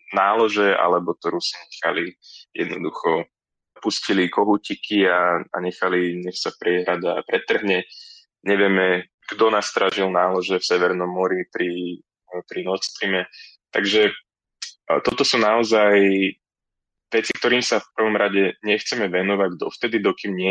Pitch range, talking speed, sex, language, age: 90-105 Hz, 125 wpm, male, Slovak, 20-39